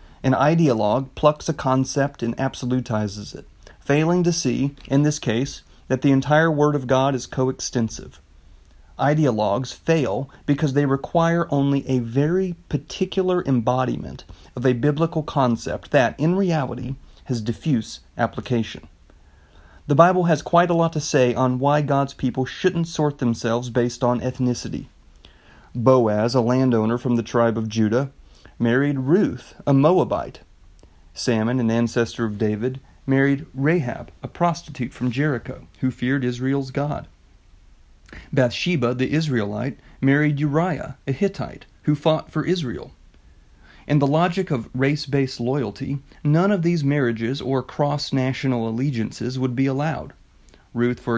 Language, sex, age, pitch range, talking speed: English, male, 30-49, 115-145 Hz, 135 wpm